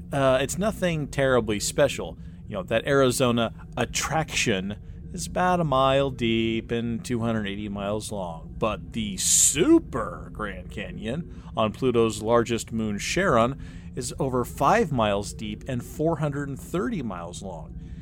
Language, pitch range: English, 110-145 Hz